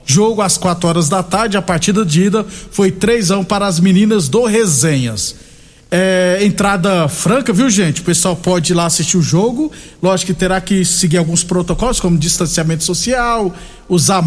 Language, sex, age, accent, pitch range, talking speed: Portuguese, male, 50-69, Brazilian, 180-220 Hz, 175 wpm